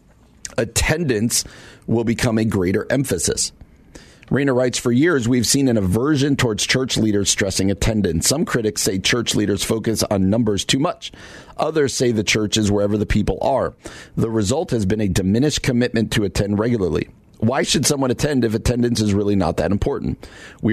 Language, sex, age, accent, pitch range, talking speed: English, male, 40-59, American, 100-125 Hz, 175 wpm